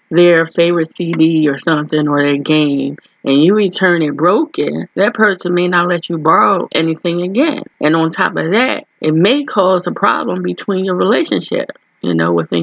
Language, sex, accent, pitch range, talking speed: English, female, American, 160-200 Hz, 180 wpm